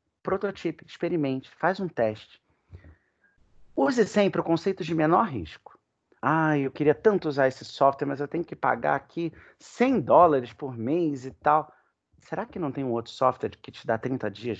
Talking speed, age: 175 wpm, 40-59